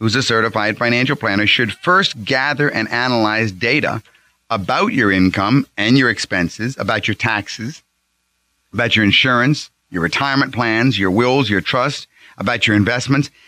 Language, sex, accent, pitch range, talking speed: English, male, American, 100-140 Hz, 145 wpm